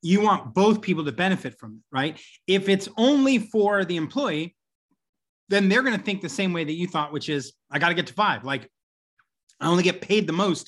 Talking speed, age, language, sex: 230 wpm, 30-49, English, male